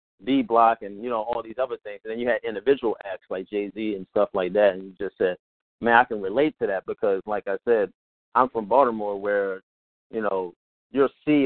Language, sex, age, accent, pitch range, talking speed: English, male, 30-49, American, 100-125 Hz, 225 wpm